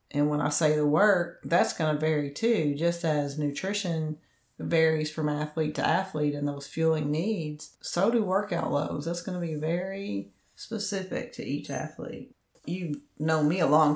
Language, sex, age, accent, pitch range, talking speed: English, female, 40-59, American, 145-165 Hz, 175 wpm